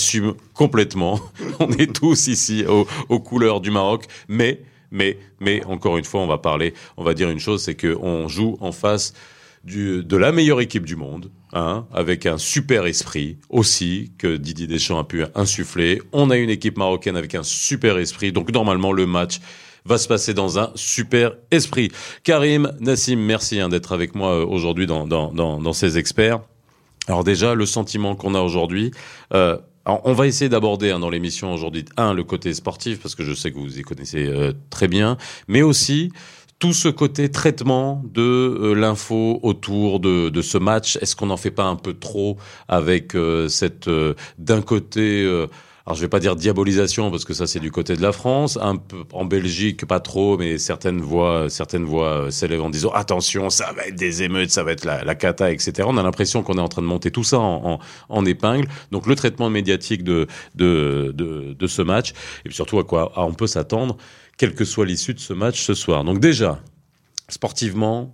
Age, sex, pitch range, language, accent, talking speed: 40-59, male, 90-115 Hz, French, French, 205 wpm